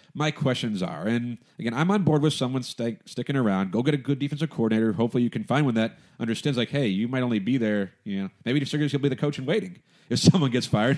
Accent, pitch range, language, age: American, 110-150 Hz, English, 30-49